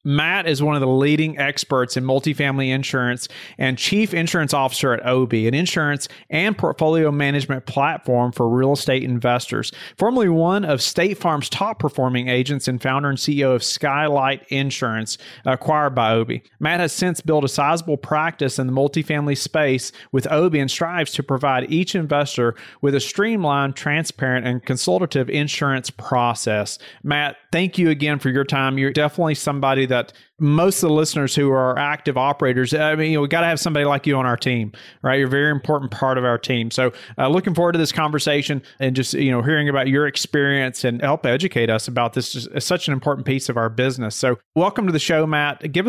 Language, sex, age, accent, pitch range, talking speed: English, male, 40-59, American, 130-155 Hz, 195 wpm